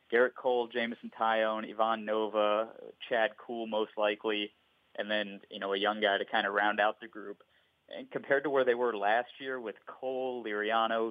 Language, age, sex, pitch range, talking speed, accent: English, 30-49, male, 105-120 Hz, 190 wpm, American